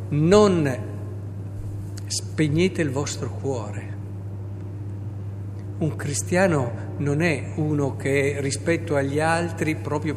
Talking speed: 90 wpm